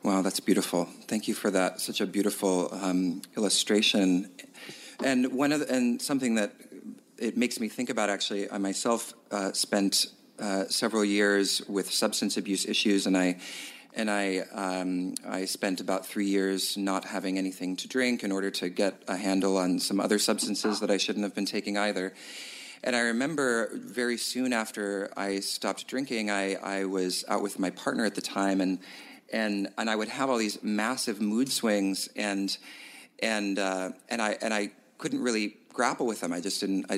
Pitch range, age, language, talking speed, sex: 95-125 Hz, 40-59, English, 185 wpm, male